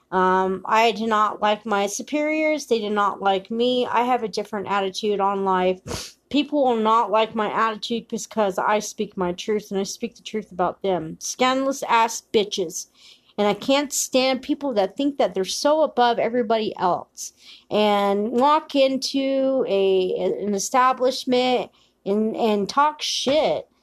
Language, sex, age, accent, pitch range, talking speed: English, female, 40-59, American, 200-260 Hz, 160 wpm